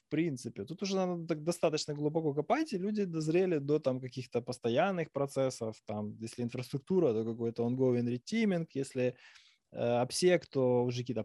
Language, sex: Ukrainian, male